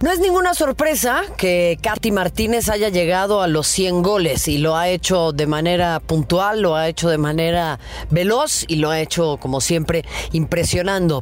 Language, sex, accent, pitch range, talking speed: Spanish, female, Mexican, 155-215 Hz, 175 wpm